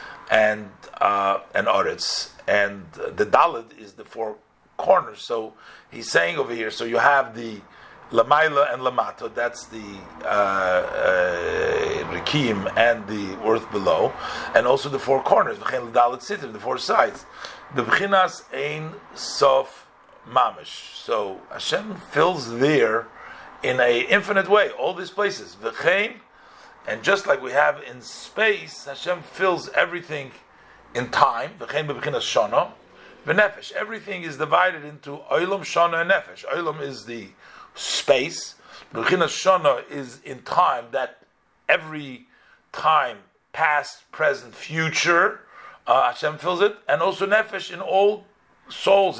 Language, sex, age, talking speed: English, male, 50-69, 125 wpm